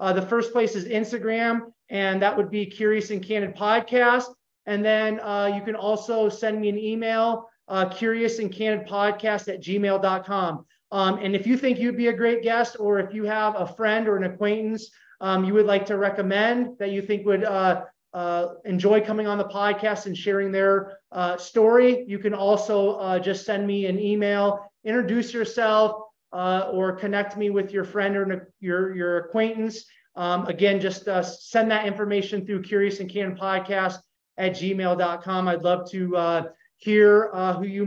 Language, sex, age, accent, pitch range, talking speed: English, male, 30-49, American, 190-220 Hz, 185 wpm